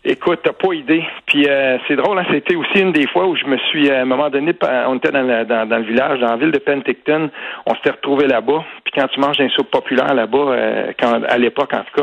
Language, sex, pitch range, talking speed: French, male, 115-135 Hz, 270 wpm